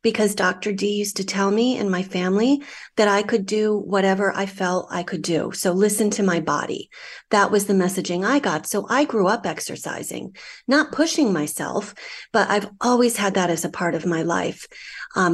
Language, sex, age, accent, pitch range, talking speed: English, female, 40-59, American, 180-235 Hz, 200 wpm